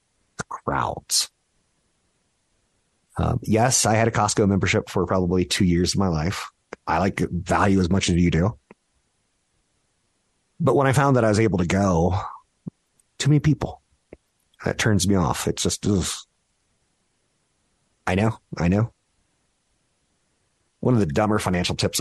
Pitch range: 85-110 Hz